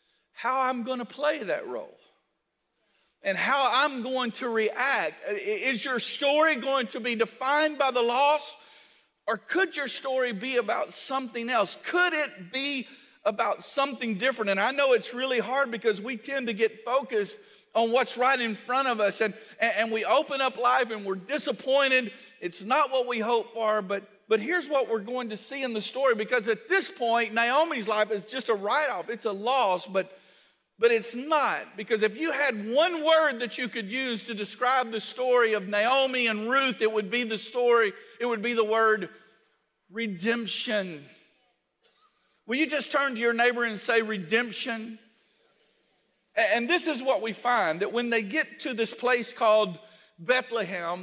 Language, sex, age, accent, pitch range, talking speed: English, male, 50-69, American, 215-265 Hz, 180 wpm